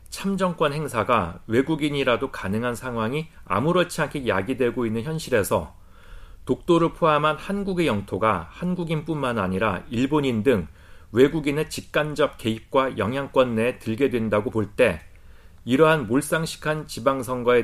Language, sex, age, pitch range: Korean, male, 40-59, 95-150 Hz